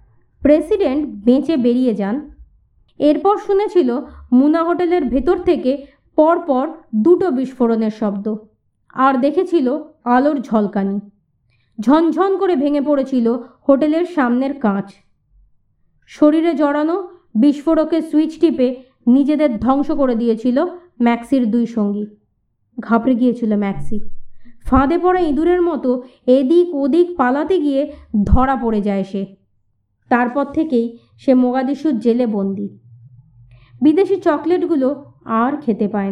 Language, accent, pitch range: Bengali, native, 210-300 Hz